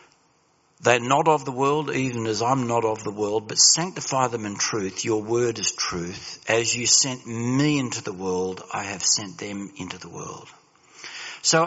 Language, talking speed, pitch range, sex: English, 185 wpm, 105-135 Hz, male